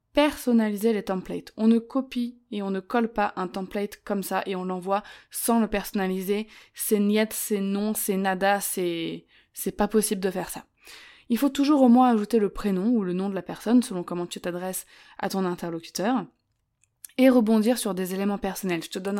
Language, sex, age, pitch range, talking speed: French, female, 20-39, 185-235 Hz, 195 wpm